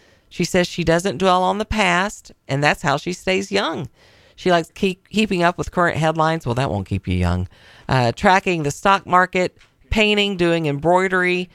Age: 40-59